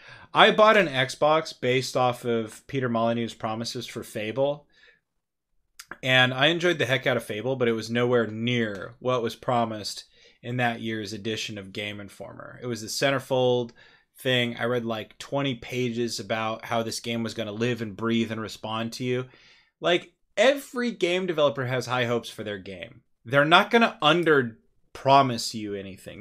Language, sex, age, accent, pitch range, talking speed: English, male, 20-39, American, 115-145 Hz, 175 wpm